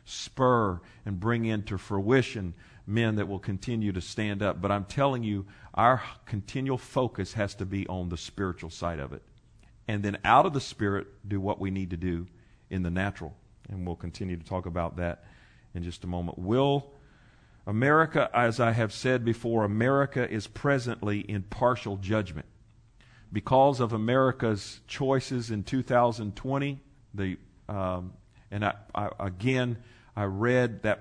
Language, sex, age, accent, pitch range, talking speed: English, male, 50-69, American, 100-120 Hz, 160 wpm